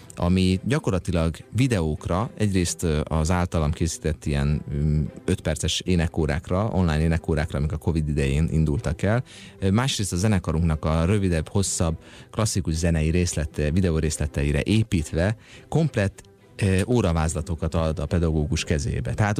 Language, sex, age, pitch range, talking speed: Hungarian, male, 30-49, 85-115 Hz, 120 wpm